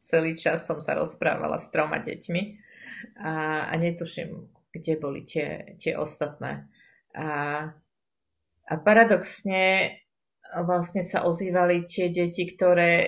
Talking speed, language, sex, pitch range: 115 wpm, Slovak, female, 165-185 Hz